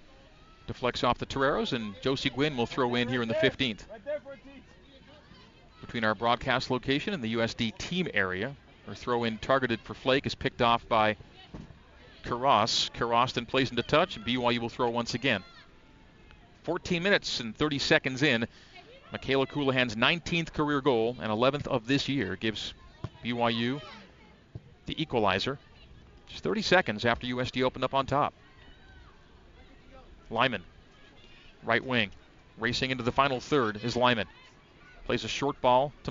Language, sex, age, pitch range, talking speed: English, male, 40-59, 115-140 Hz, 150 wpm